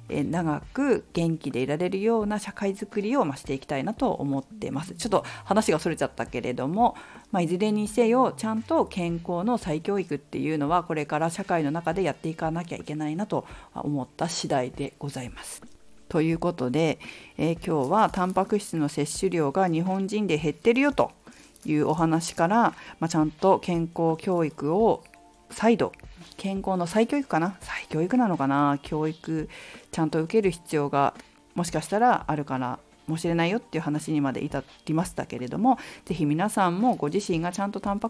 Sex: female